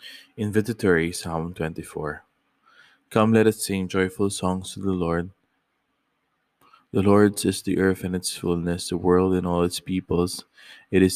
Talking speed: 150 wpm